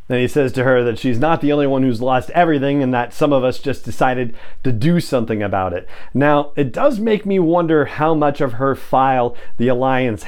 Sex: male